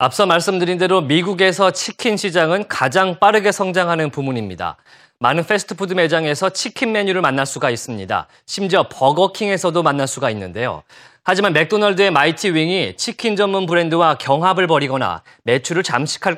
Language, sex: Korean, male